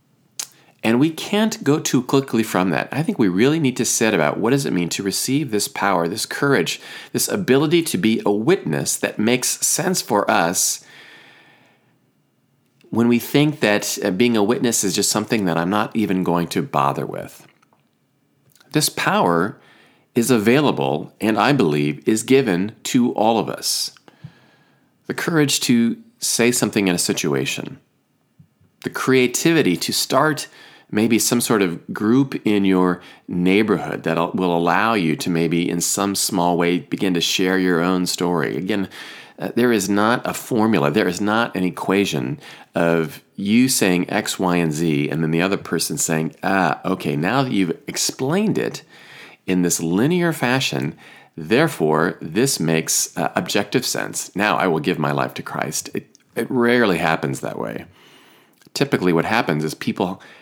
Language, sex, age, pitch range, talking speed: English, male, 40-59, 85-125 Hz, 165 wpm